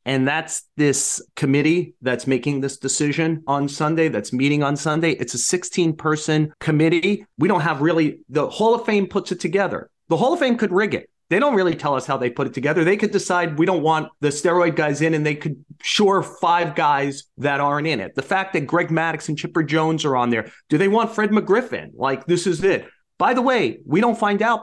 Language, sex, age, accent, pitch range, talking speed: English, male, 30-49, American, 150-190 Hz, 225 wpm